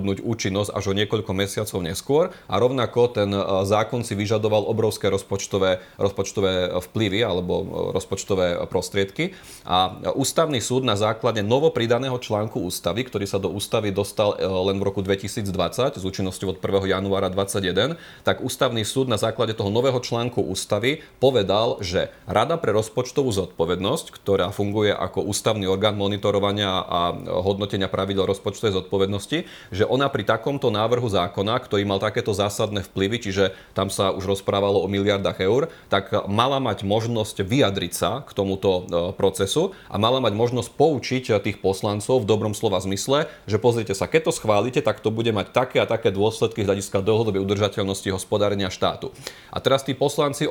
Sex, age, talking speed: male, 30-49, 155 wpm